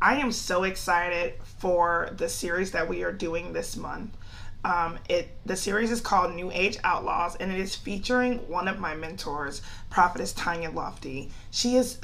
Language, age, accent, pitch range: English, 20-39, American, 170-200 Hz